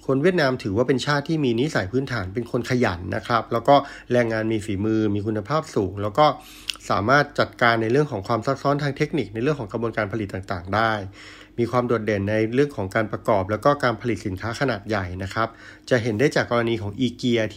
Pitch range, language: 105-130 Hz, Thai